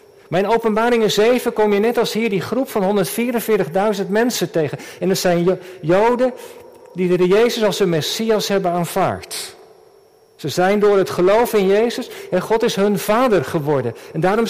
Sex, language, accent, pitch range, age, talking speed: male, Dutch, Dutch, 185-240 Hz, 50-69, 175 wpm